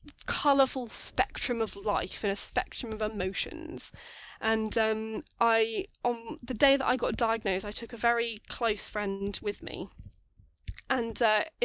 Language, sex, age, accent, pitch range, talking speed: English, female, 10-29, British, 220-295 Hz, 150 wpm